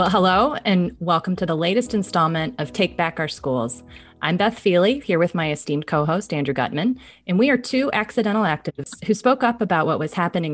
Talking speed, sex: 205 wpm, female